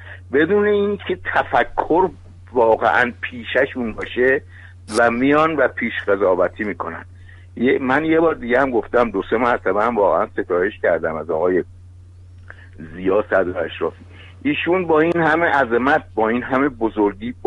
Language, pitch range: Persian, 90-135 Hz